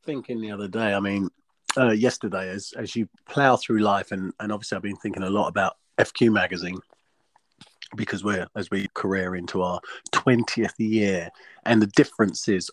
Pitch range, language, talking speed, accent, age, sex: 100-120 Hz, English, 175 wpm, British, 30-49, male